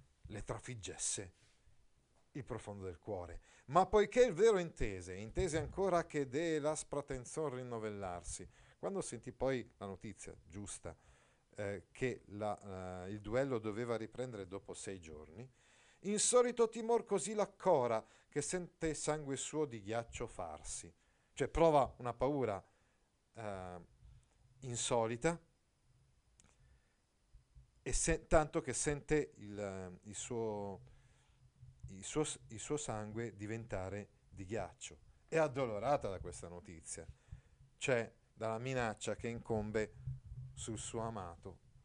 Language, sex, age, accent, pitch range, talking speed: Italian, male, 50-69, native, 100-140 Hz, 115 wpm